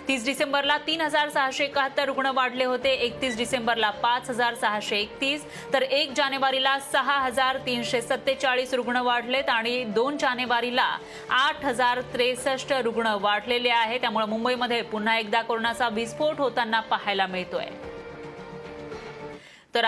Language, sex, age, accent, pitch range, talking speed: Marathi, female, 30-49, native, 220-260 Hz, 125 wpm